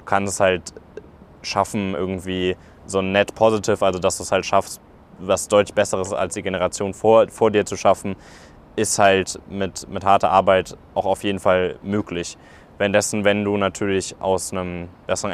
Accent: German